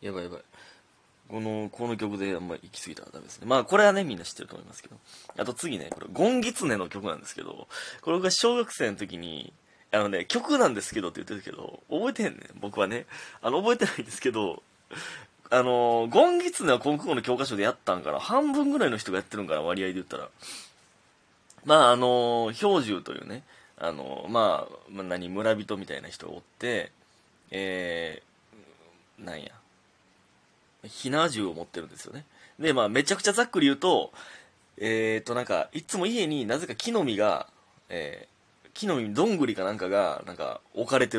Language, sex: Japanese, male